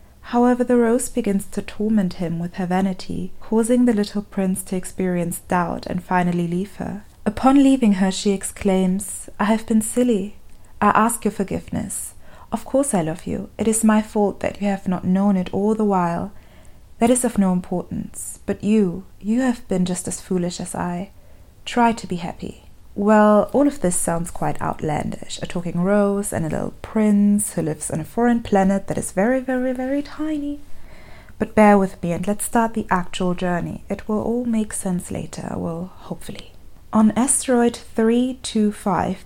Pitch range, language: 185-225 Hz, English